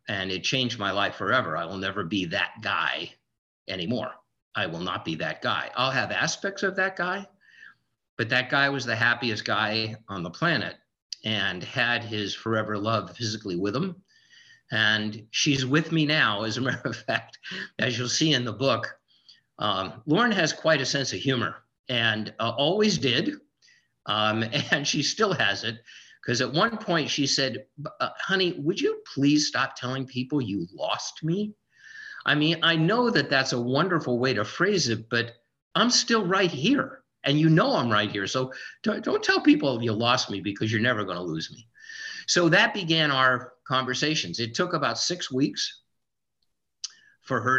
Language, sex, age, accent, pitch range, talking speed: English, male, 50-69, American, 110-165 Hz, 180 wpm